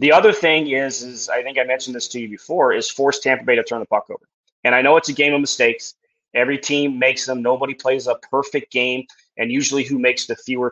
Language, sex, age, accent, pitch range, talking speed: English, male, 30-49, American, 125-160 Hz, 250 wpm